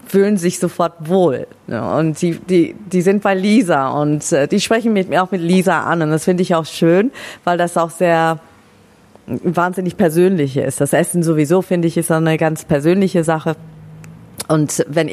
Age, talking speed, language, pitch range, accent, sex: 40-59, 175 wpm, German, 160-180 Hz, German, female